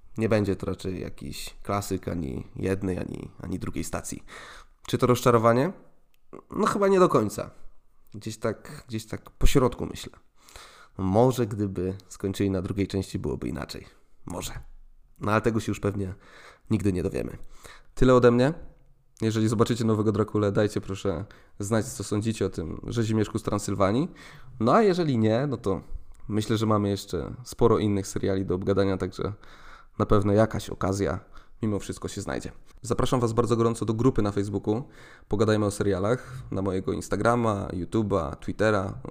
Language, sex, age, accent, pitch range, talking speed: Polish, male, 20-39, native, 95-120 Hz, 155 wpm